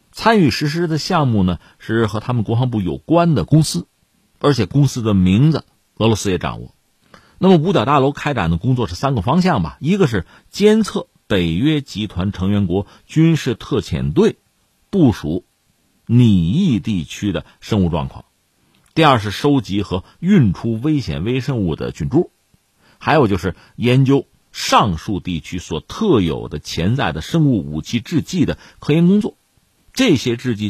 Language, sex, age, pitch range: Chinese, male, 50-69, 95-150 Hz